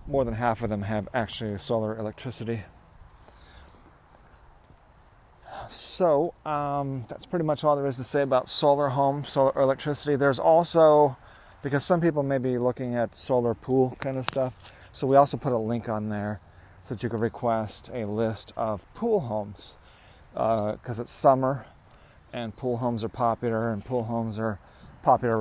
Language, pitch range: English, 105-130 Hz